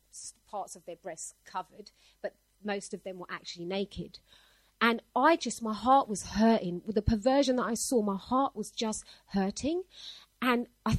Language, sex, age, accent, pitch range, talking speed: English, female, 30-49, British, 205-255 Hz, 175 wpm